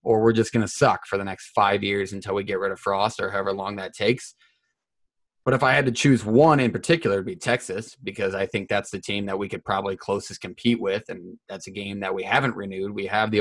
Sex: male